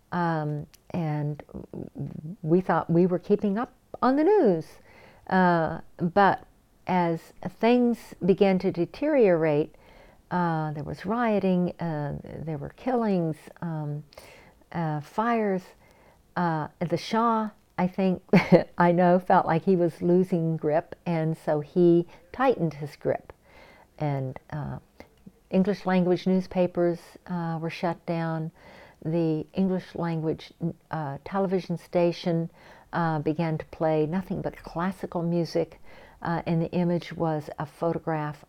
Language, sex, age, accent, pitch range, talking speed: English, female, 50-69, American, 155-185 Hz, 120 wpm